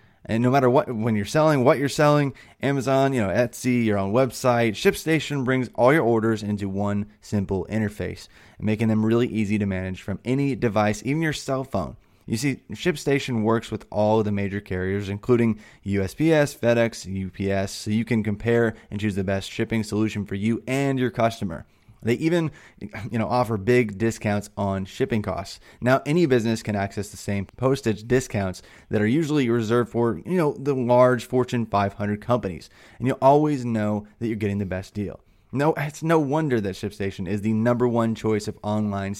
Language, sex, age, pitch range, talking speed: English, male, 20-39, 105-130 Hz, 185 wpm